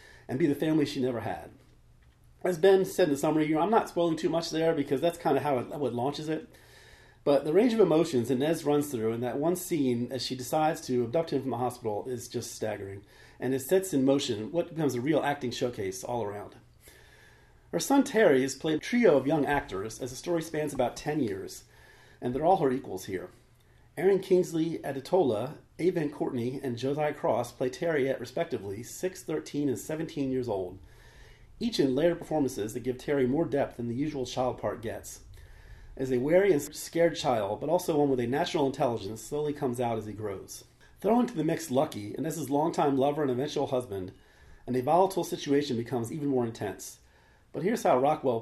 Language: English